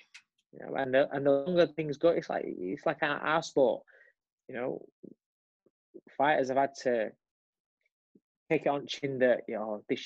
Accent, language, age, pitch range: British, English, 20-39, 130-165 Hz